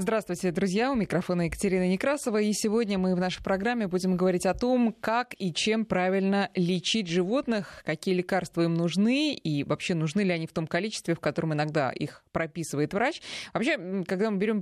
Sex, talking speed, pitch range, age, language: female, 180 wpm, 150-200 Hz, 20-39, Russian